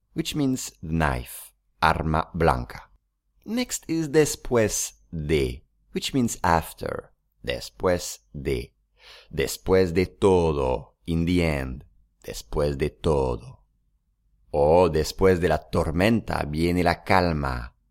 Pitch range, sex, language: 70-115 Hz, male, English